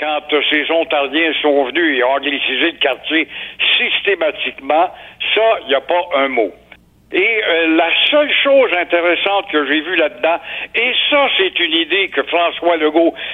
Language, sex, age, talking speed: French, male, 60-79, 155 wpm